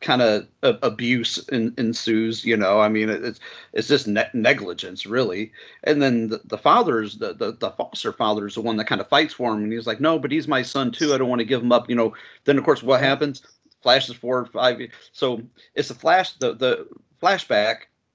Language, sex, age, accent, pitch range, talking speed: English, male, 40-59, American, 110-155 Hz, 220 wpm